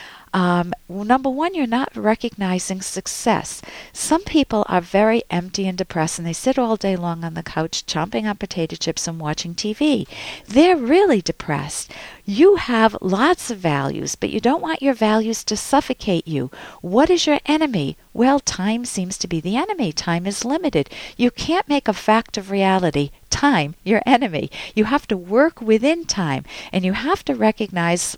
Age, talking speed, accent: 50-69, 175 wpm, American